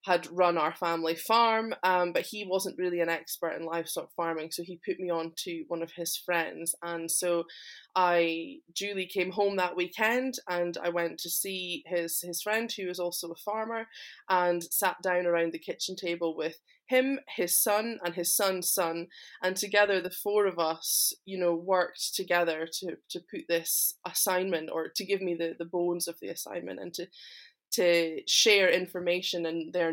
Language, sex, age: English, female, 20-39